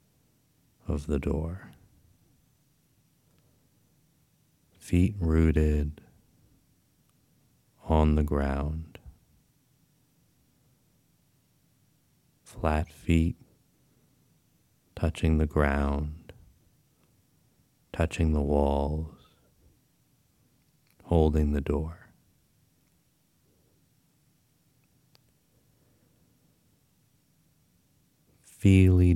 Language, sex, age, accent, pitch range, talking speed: English, male, 40-59, American, 75-90 Hz, 40 wpm